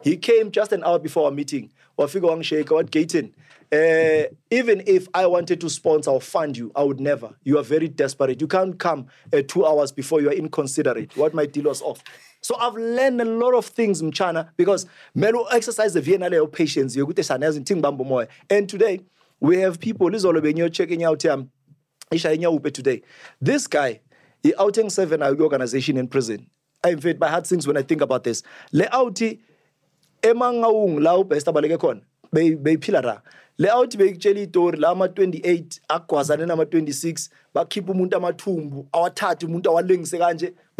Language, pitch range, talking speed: English, 155-205 Hz, 160 wpm